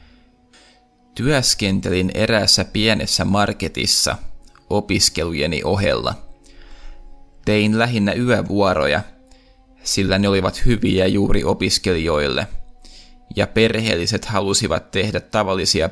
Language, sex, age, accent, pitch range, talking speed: Finnish, male, 20-39, native, 95-115 Hz, 75 wpm